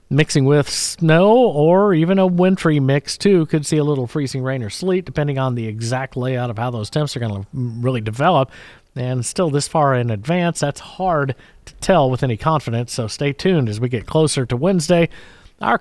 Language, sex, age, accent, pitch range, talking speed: English, male, 50-69, American, 125-180 Hz, 205 wpm